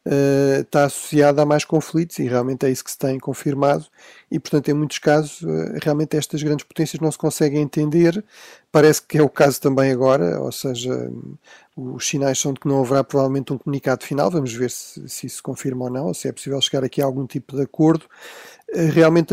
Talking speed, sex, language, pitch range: 205 wpm, male, Portuguese, 135-150 Hz